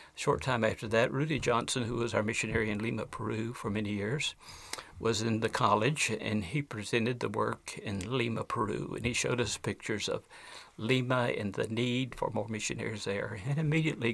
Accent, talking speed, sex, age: American, 185 wpm, male, 60-79